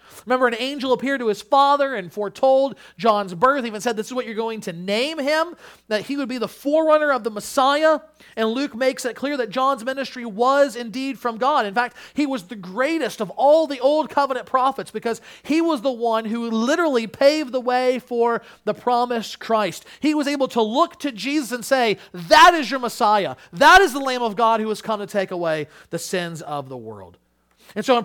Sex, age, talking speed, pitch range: male, 40-59, 220 wpm, 195-265 Hz